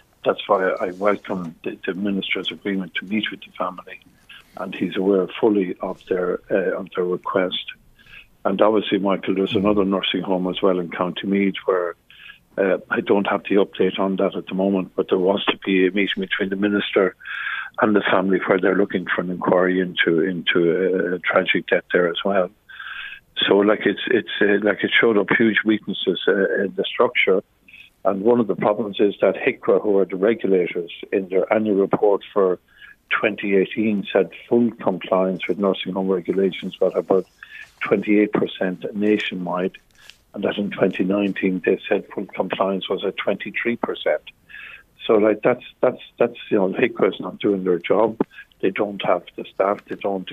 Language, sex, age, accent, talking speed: English, male, 50-69, Irish, 180 wpm